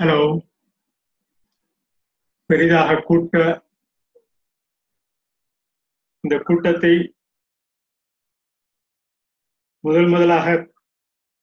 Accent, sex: native, male